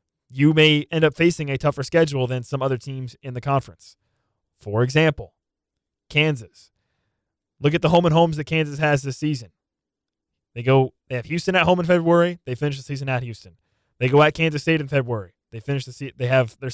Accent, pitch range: American, 120-155 Hz